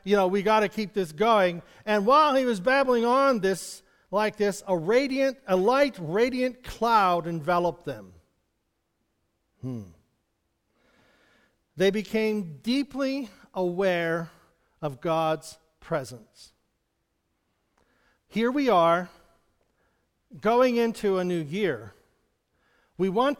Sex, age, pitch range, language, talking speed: male, 50-69, 155-225 Hz, English, 110 wpm